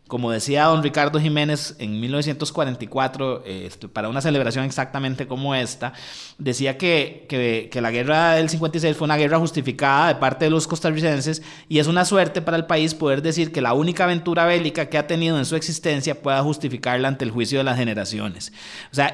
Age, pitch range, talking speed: 30-49, 125-155 Hz, 190 wpm